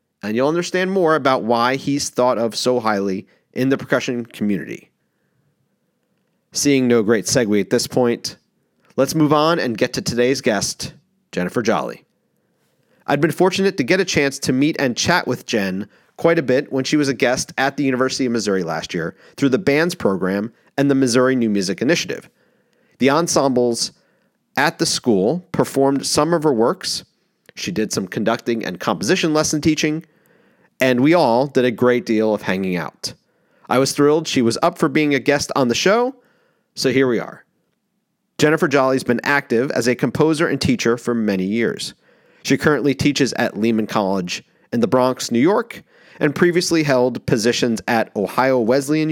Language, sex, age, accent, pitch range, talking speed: English, male, 30-49, American, 120-155 Hz, 180 wpm